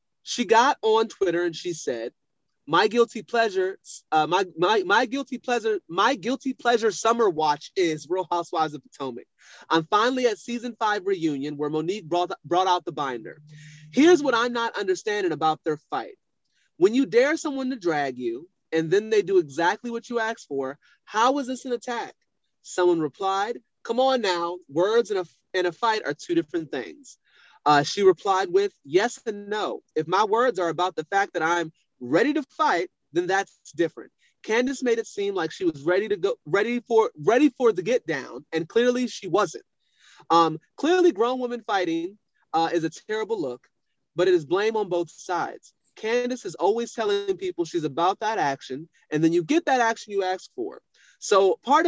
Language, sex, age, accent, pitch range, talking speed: English, male, 30-49, American, 175-275 Hz, 190 wpm